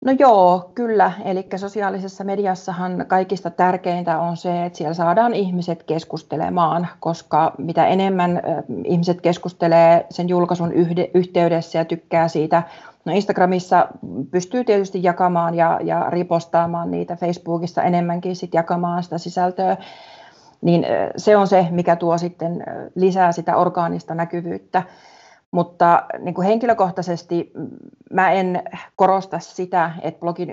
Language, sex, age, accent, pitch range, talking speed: Finnish, female, 30-49, native, 165-190 Hz, 115 wpm